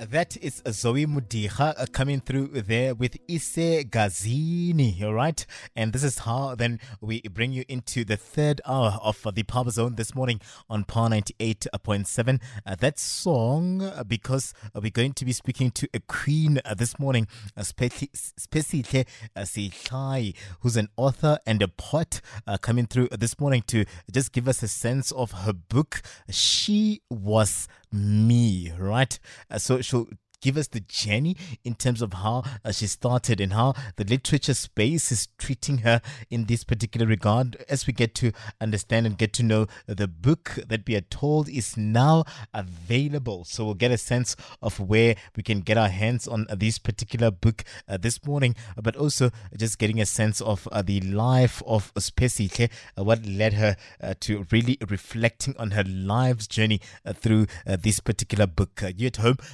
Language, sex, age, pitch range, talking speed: English, male, 20-39, 105-130 Hz, 170 wpm